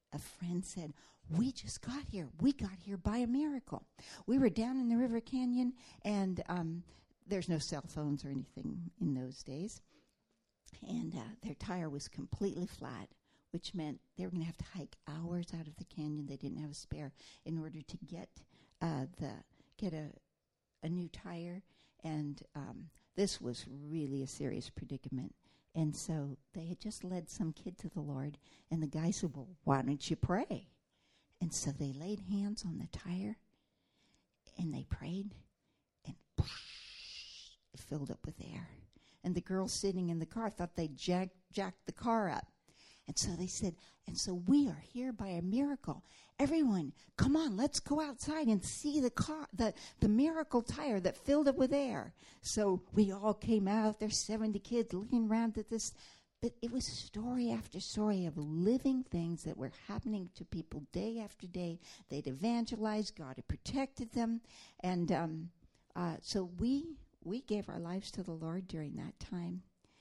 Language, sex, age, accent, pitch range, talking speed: English, female, 60-79, American, 160-220 Hz, 175 wpm